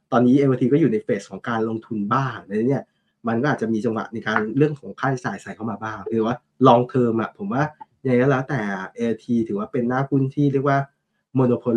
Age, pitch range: 20-39, 115-145 Hz